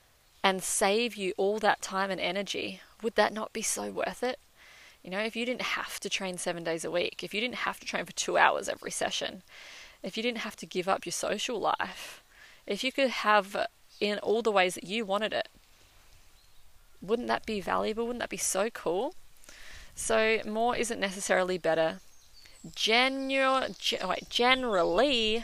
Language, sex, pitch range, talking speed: English, female, 175-220 Hz, 175 wpm